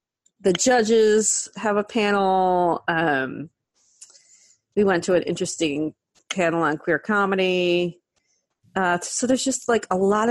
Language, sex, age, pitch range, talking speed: English, female, 40-59, 175-245 Hz, 130 wpm